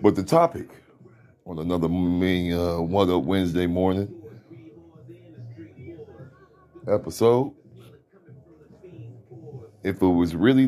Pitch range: 85-130 Hz